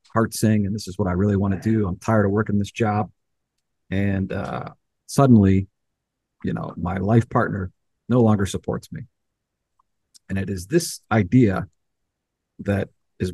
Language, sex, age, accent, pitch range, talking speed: English, male, 50-69, American, 100-115 Hz, 160 wpm